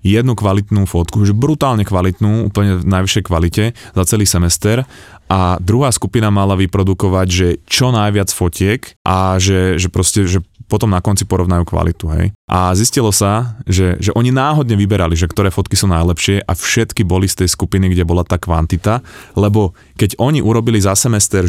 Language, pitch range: Slovak, 90-105 Hz